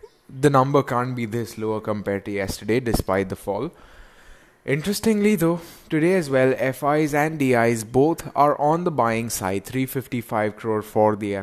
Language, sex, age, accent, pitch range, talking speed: English, male, 20-39, Indian, 105-130 Hz, 170 wpm